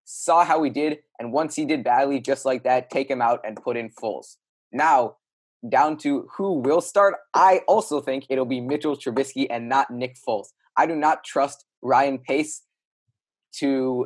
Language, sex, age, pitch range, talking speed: English, male, 20-39, 125-150 Hz, 185 wpm